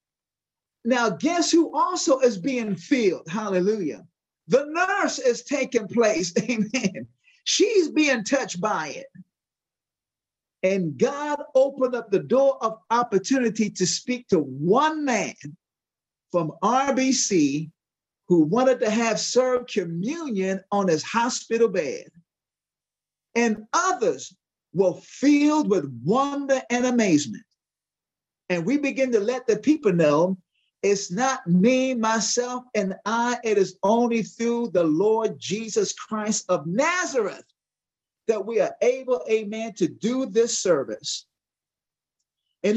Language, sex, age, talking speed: English, male, 50-69, 120 wpm